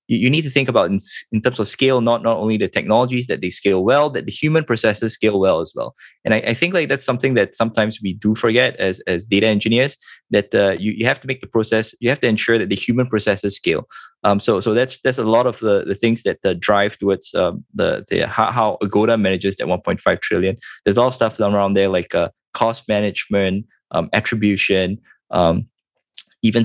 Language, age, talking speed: English, 20-39, 220 wpm